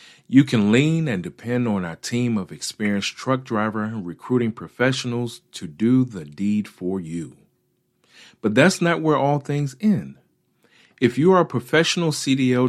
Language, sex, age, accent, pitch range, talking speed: English, male, 40-59, American, 105-140 Hz, 155 wpm